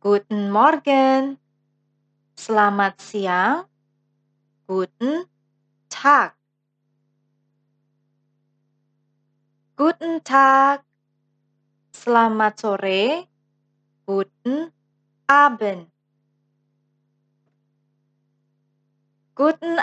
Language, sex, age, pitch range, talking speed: German, female, 20-39, 145-215 Hz, 40 wpm